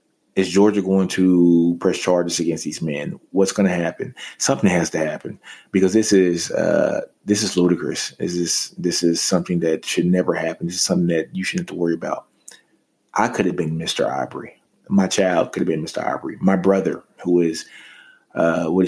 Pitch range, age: 85-95 Hz, 20-39